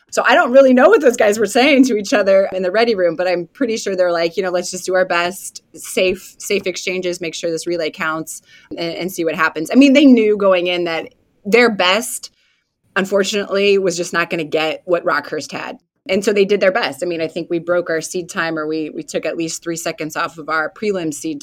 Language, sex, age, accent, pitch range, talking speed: English, female, 20-39, American, 165-200 Hz, 250 wpm